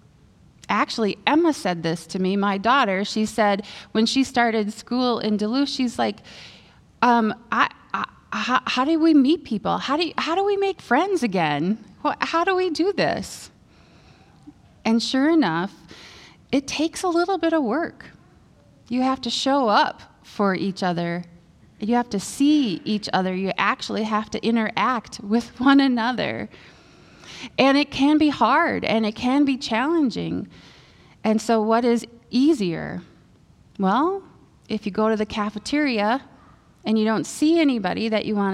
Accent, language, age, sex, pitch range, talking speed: American, English, 20-39, female, 195-275 Hz, 155 wpm